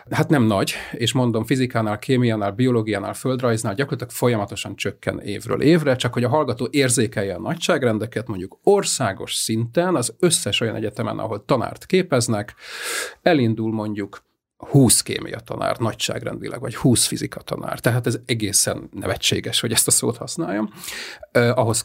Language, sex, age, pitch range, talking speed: Hungarian, male, 40-59, 110-130 Hz, 140 wpm